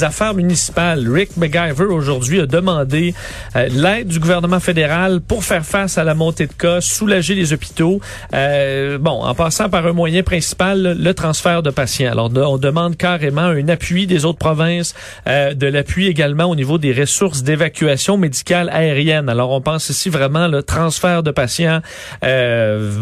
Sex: male